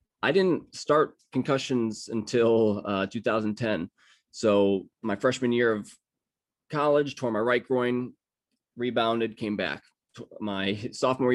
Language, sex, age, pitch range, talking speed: English, male, 20-39, 105-130 Hz, 120 wpm